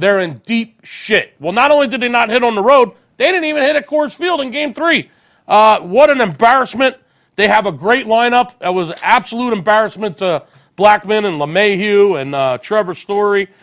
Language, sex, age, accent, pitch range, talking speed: English, male, 40-59, American, 180-225 Hz, 205 wpm